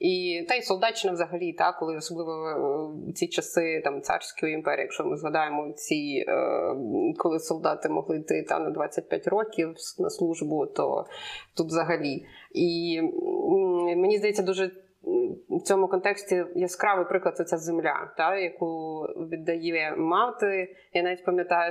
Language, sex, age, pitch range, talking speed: Ukrainian, female, 20-39, 175-230 Hz, 140 wpm